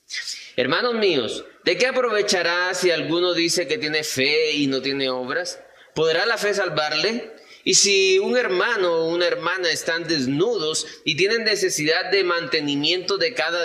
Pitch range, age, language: 140-190 Hz, 30-49, Spanish